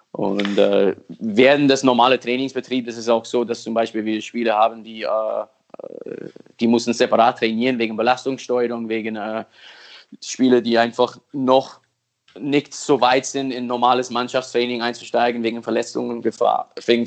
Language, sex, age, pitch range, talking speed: German, male, 20-39, 115-130 Hz, 145 wpm